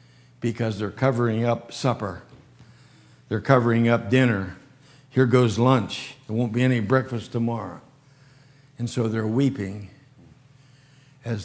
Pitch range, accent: 120-135 Hz, American